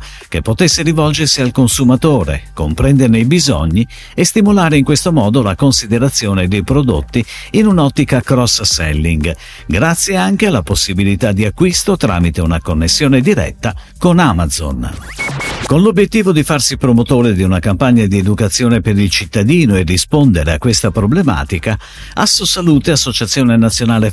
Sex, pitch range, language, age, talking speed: male, 95-150 Hz, Italian, 50-69, 130 wpm